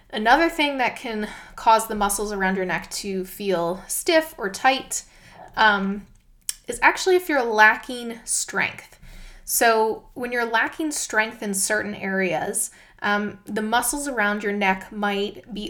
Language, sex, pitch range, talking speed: English, female, 200-255 Hz, 145 wpm